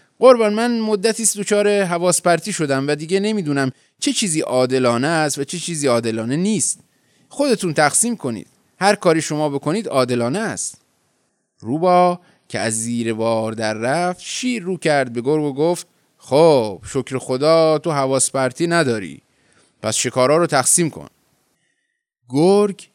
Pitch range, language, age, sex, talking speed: 120-175 Hz, Persian, 30-49, male, 135 wpm